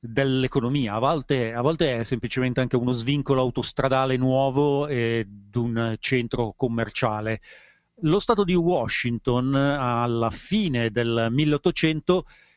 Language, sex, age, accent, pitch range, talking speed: Italian, male, 40-59, native, 125-170 Hz, 110 wpm